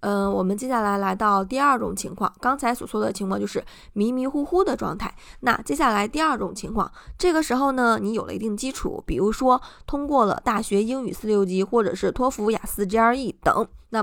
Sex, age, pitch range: female, 20-39, 195-255 Hz